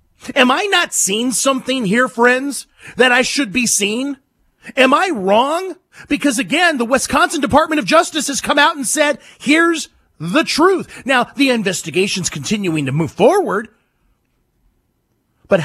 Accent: American